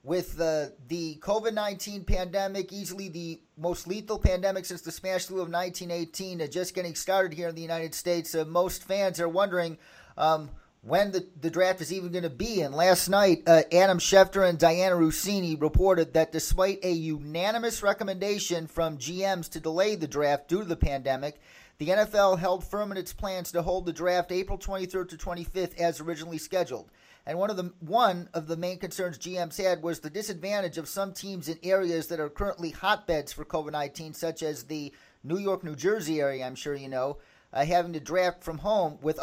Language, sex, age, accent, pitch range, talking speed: English, male, 40-59, American, 160-185 Hz, 195 wpm